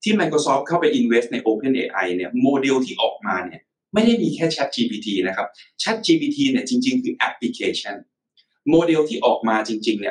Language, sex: Thai, male